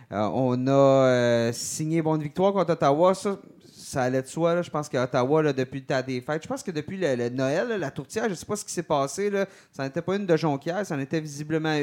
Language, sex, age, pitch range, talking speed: French, male, 30-49, 120-160 Hz, 275 wpm